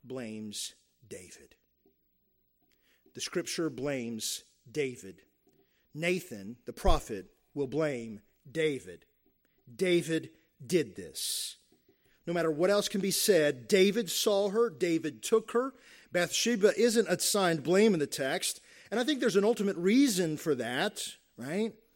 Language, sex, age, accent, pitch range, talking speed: English, male, 40-59, American, 165-215 Hz, 125 wpm